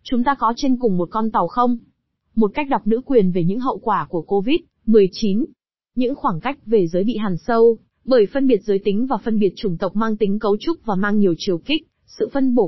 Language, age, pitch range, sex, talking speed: Vietnamese, 20-39, 195-240 Hz, female, 235 wpm